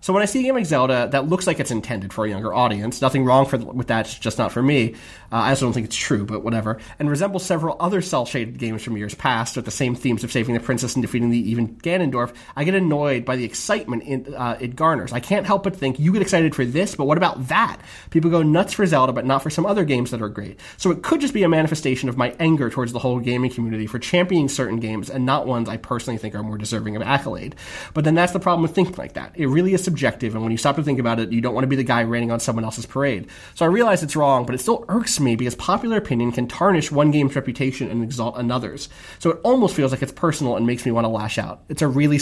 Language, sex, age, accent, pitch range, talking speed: English, male, 30-49, American, 120-165 Hz, 285 wpm